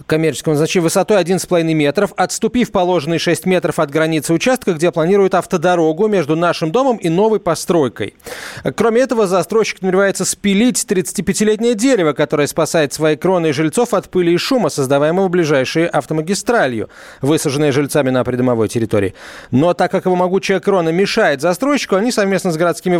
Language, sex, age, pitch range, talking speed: Russian, male, 30-49, 145-195 Hz, 150 wpm